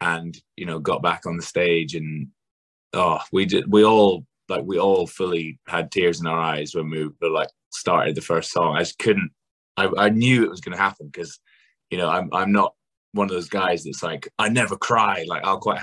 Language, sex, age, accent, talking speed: English, male, 20-39, British, 225 wpm